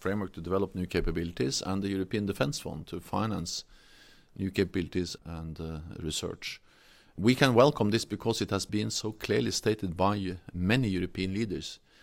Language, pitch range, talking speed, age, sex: English, 95-115 Hz, 160 wpm, 40-59, male